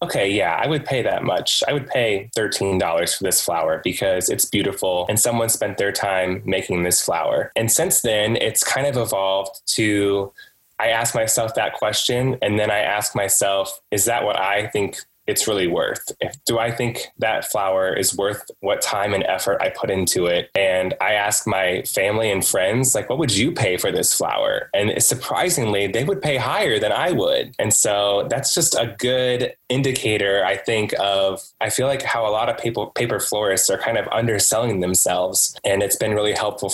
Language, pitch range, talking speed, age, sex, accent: English, 95-120 Hz, 195 wpm, 20-39, male, American